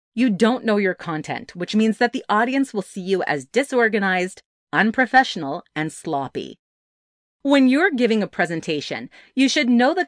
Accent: American